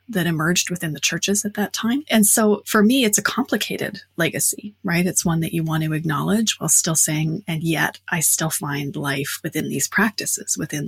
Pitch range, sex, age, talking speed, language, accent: 150-195 Hz, female, 30-49, 205 wpm, English, American